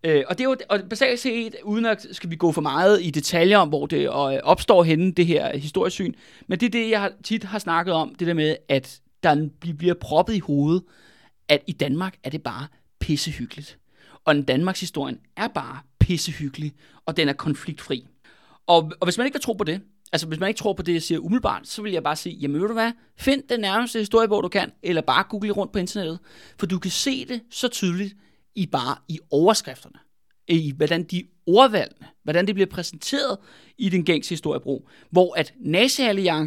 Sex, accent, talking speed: male, native, 205 wpm